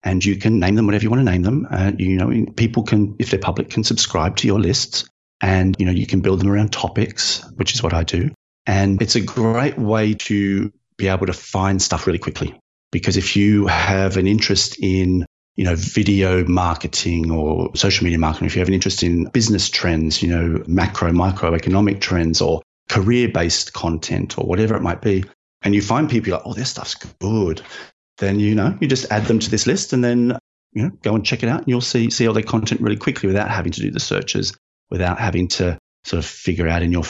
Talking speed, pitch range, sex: 225 wpm, 85-110 Hz, male